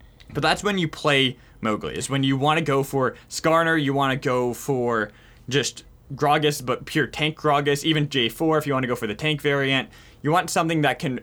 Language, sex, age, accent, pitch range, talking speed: English, male, 20-39, American, 125-155 Hz, 220 wpm